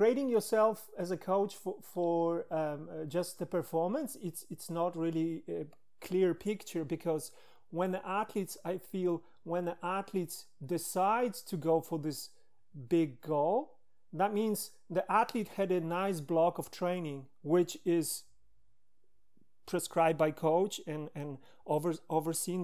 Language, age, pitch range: English, 30-49, 165-195 Hz